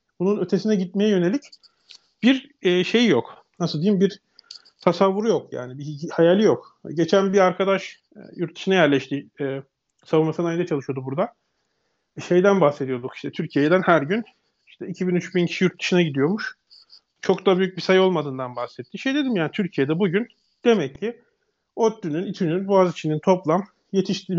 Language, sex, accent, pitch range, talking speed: Turkish, male, native, 165-205 Hz, 155 wpm